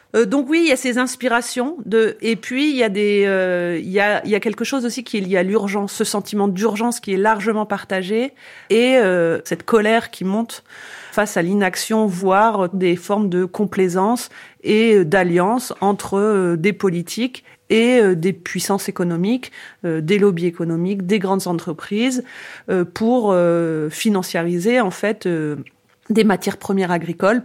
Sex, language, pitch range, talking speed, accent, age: female, French, 180-225 Hz, 175 wpm, French, 40-59